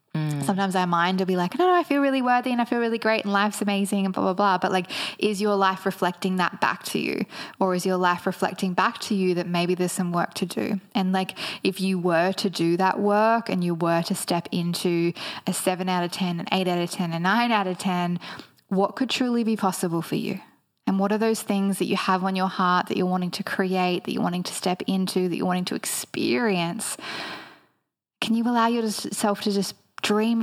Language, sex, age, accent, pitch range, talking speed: English, female, 10-29, Australian, 180-200 Hz, 235 wpm